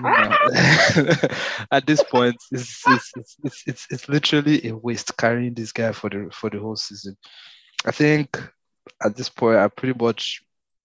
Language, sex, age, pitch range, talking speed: English, male, 20-39, 100-120 Hz, 155 wpm